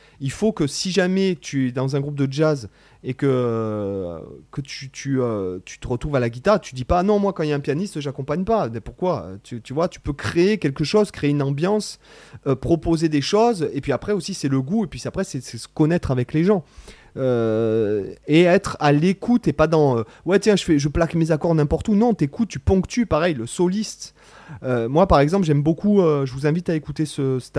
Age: 30-49